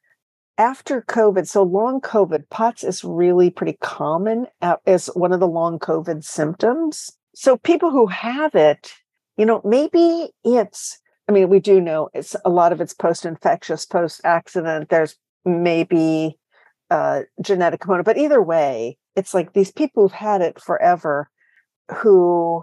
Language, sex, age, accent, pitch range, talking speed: English, female, 50-69, American, 170-225 Hz, 145 wpm